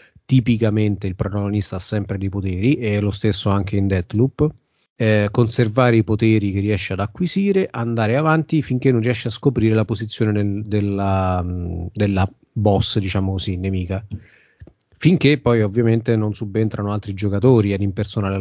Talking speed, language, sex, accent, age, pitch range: 150 wpm, Italian, male, native, 30-49, 100-115 Hz